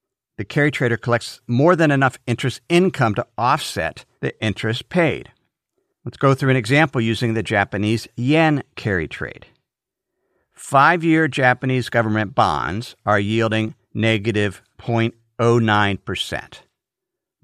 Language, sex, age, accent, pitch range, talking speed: English, male, 50-69, American, 110-150 Hz, 115 wpm